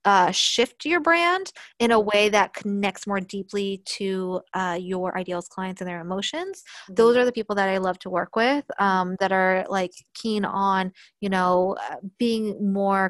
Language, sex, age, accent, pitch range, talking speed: English, female, 20-39, American, 185-215 Hz, 180 wpm